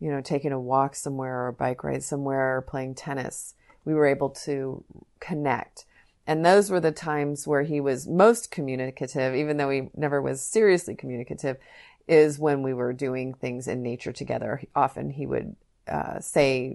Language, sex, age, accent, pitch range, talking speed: English, female, 30-49, American, 130-160 Hz, 180 wpm